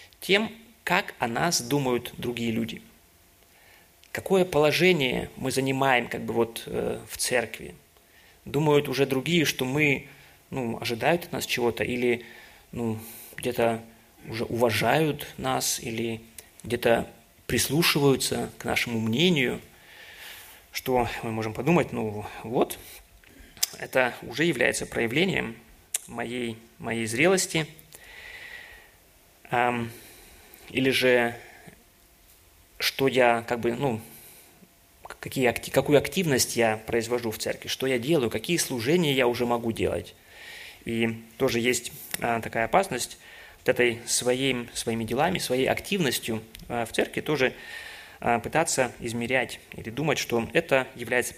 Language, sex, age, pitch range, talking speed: Russian, male, 30-49, 115-140 Hz, 110 wpm